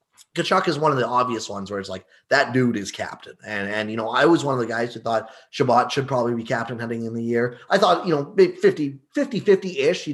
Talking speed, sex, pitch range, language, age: 260 wpm, male, 125-180 Hz, English, 20-39